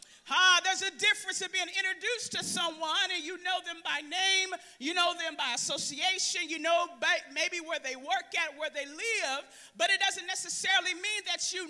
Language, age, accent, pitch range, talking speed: English, 40-59, American, 355-415 Hz, 190 wpm